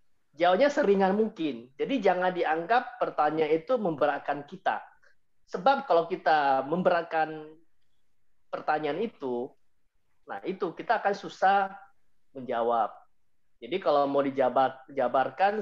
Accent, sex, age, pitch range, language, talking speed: native, male, 30-49, 130-185 Hz, Indonesian, 100 wpm